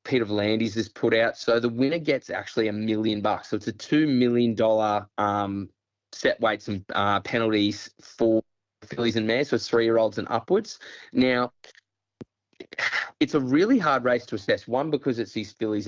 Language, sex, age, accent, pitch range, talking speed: English, male, 20-39, Australian, 105-120 Hz, 180 wpm